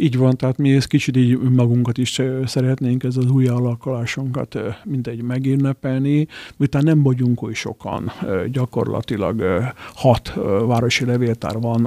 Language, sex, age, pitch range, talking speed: Hungarian, male, 50-69, 110-130 Hz, 130 wpm